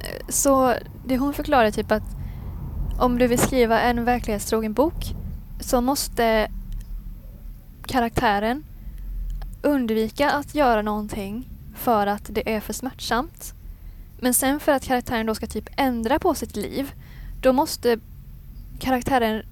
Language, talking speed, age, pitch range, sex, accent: English, 125 wpm, 10-29, 205-250 Hz, female, Swedish